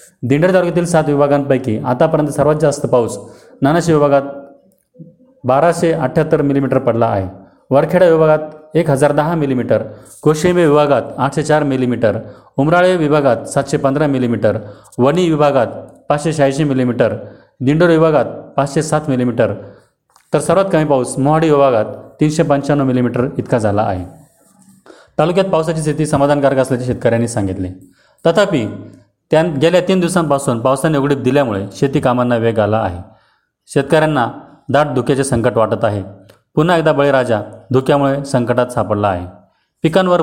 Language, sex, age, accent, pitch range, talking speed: Marathi, male, 30-49, native, 115-155 Hz, 125 wpm